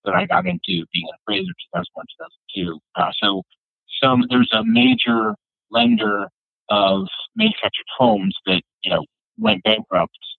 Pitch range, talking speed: 95-125 Hz, 140 wpm